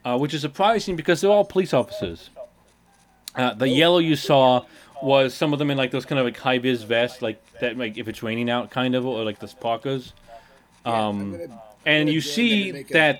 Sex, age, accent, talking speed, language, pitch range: male, 30-49, American, 205 wpm, English, 120-150 Hz